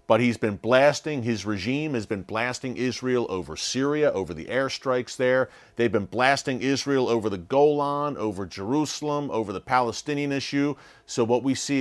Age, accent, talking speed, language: 40-59, American, 170 wpm, English